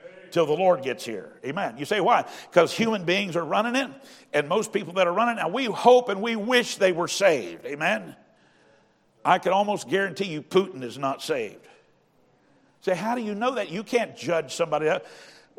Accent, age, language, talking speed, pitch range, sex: American, 60-79, English, 200 wpm, 165-205 Hz, male